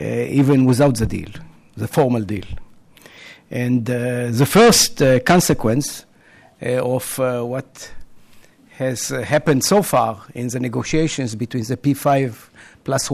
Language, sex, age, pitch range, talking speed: English, male, 50-69, 125-155 Hz, 135 wpm